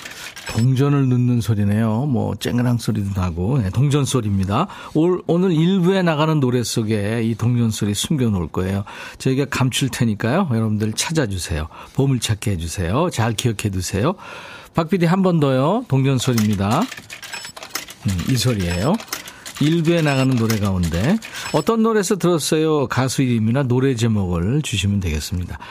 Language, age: Korean, 50-69